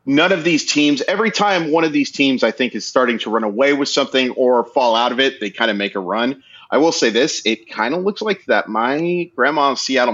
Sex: male